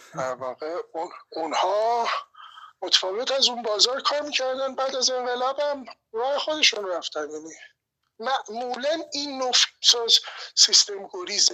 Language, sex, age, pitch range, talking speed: Persian, male, 60-79, 200-280 Hz, 105 wpm